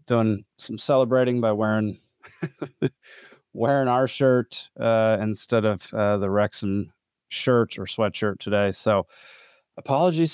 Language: English